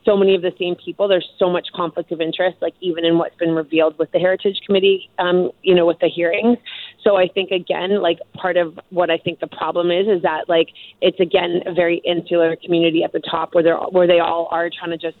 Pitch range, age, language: 165-180 Hz, 30-49, English